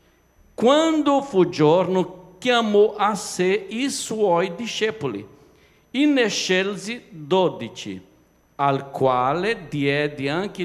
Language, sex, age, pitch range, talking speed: Italian, male, 60-79, 150-225 Hz, 90 wpm